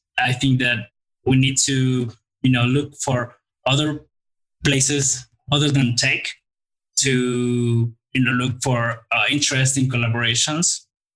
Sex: male